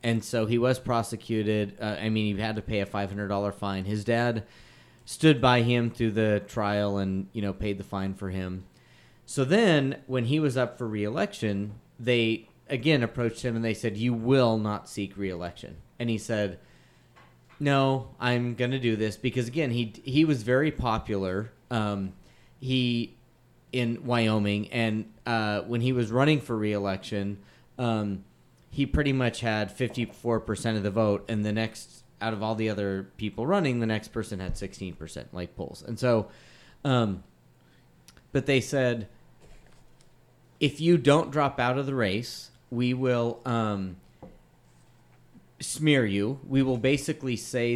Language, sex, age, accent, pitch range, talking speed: English, male, 30-49, American, 105-125 Hz, 160 wpm